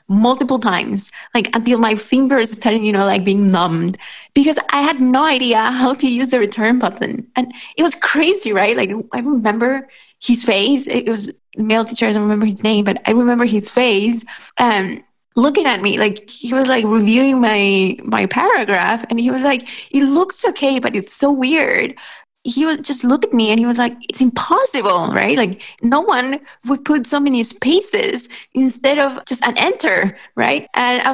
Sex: female